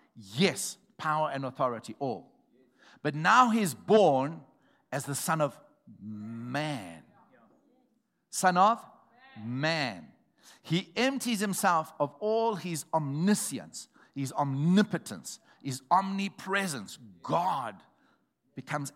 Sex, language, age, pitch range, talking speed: male, English, 60-79, 140-195 Hz, 95 wpm